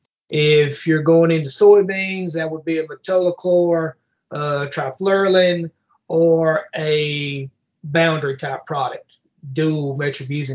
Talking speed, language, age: 100 wpm, English, 30-49